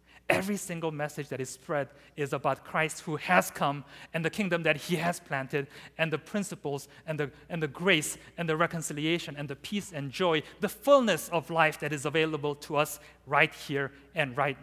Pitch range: 130-180 Hz